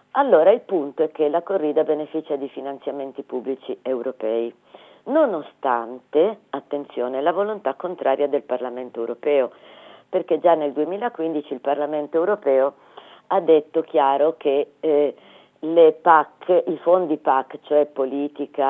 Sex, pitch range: female, 135-170 Hz